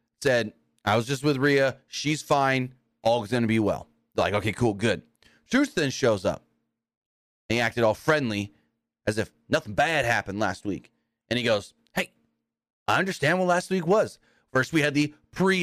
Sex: male